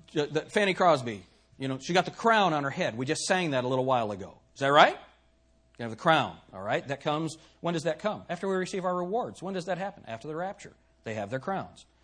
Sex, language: male, English